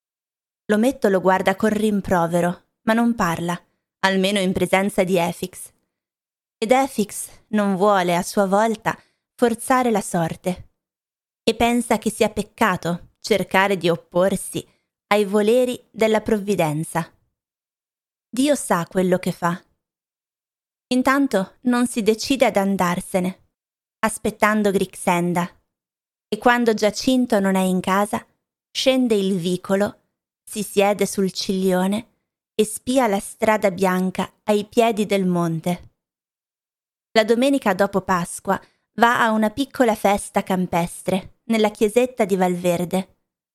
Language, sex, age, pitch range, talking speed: Italian, female, 20-39, 185-225 Hz, 120 wpm